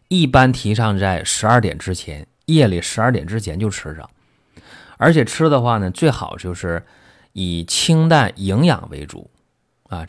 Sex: male